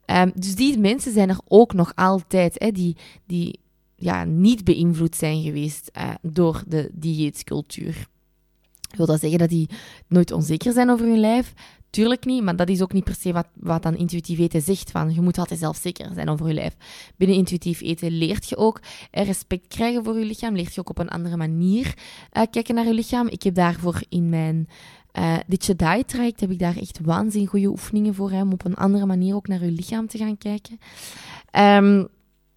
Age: 20-39